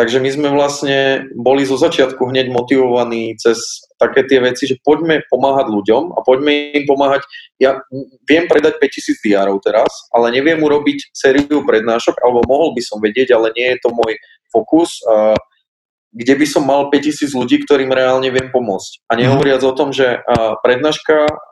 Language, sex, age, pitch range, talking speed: Slovak, male, 20-39, 120-145 Hz, 165 wpm